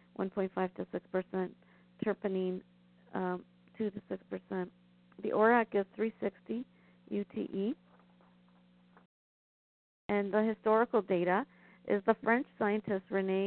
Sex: female